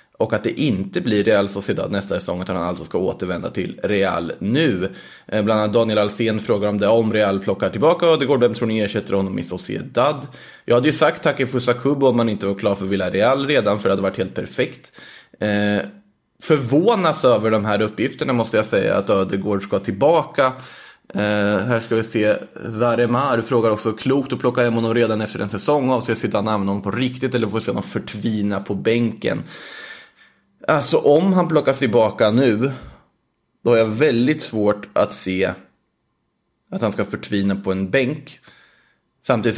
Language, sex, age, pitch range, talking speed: Swedish, male, 20-39, 100-125 Hz, 195 wpm